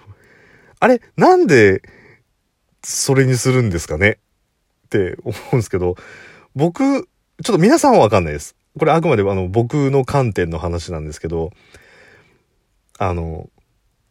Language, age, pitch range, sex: Japanese, 40-59, 95-155 Hz, male